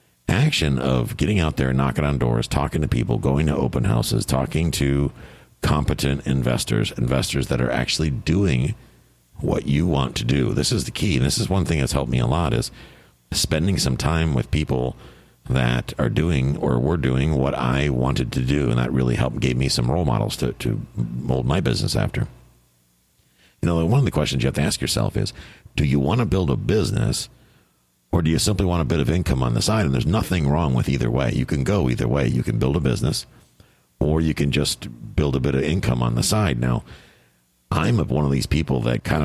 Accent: American